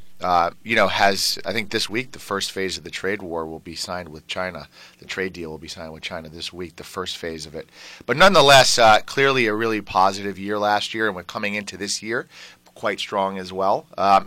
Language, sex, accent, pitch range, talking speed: English, male, American, 95-110 Hz, 235 wpm